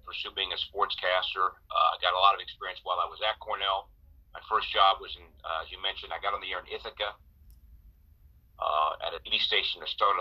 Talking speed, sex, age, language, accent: 230 wpm, male, 40-59, English, American